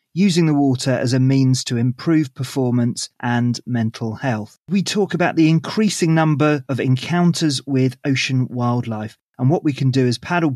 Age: 30-49